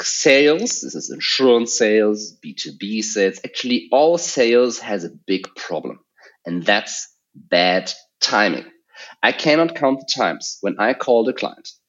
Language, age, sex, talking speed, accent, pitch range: English, 30-49, male, 140 wpm, German, 110-175 Hz